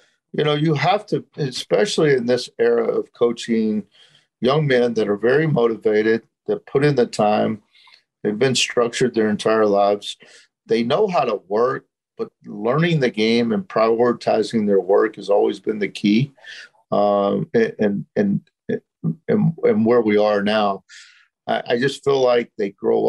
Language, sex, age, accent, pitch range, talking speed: English, male, 50-69, American, 110-140 Hz, 165 wpm